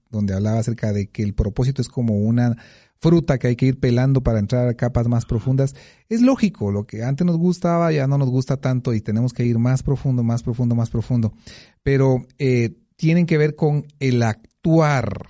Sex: male